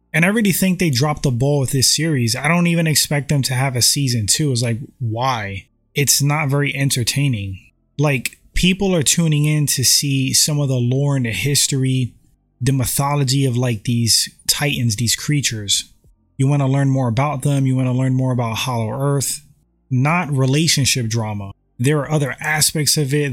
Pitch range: 120-150 Hz